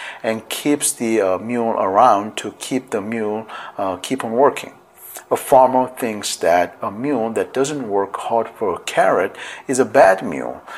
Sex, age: male, 50-69